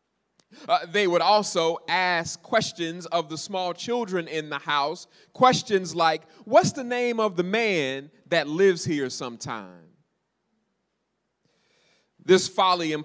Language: English